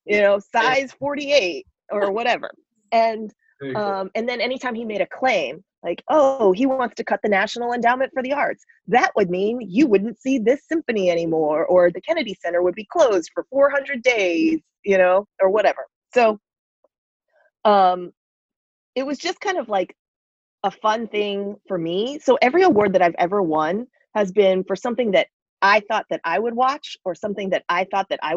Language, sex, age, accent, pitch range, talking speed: English, female, 30-49, American, 175-250 Hz, 185 wpm